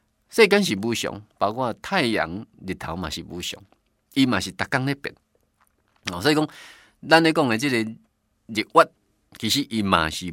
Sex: male